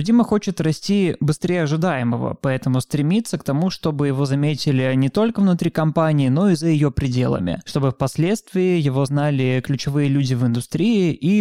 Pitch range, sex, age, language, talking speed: 130-150 Hz, male, 20-39, Russian, 160 wpm